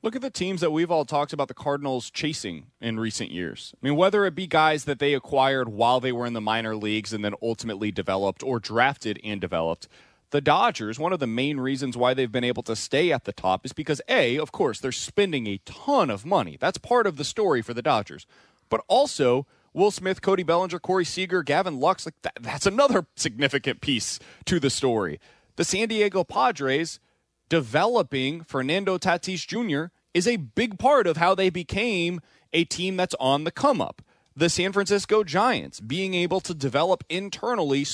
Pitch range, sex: 125-185 Hz, male